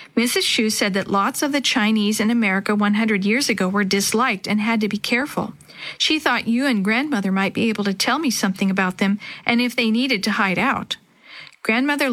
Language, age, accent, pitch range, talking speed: English, 50-69, American, 200-235 Hz, 210 wpm